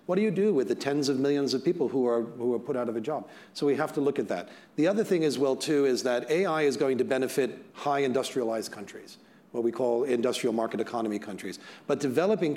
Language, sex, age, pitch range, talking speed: English, male, 40-59, 125-160 Hz, 250 wpm